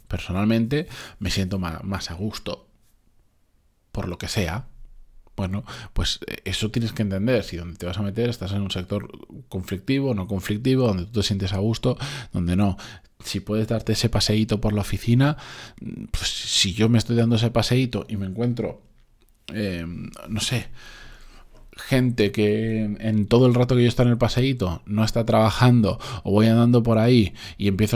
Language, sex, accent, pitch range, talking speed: Spanish, male, Spanish, 95-115 Hz, 175 wpm